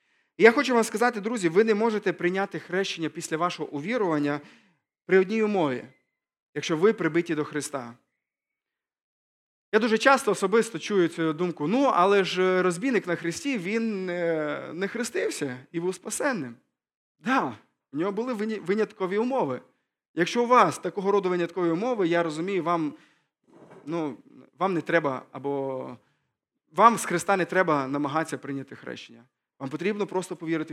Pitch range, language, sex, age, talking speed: 150-200 Hz, Ukrainian, male, 20-39, 145 wpm